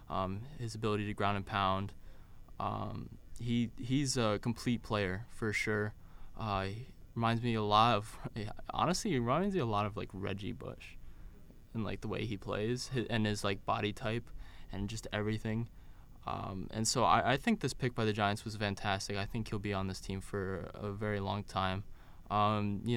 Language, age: English, 20-39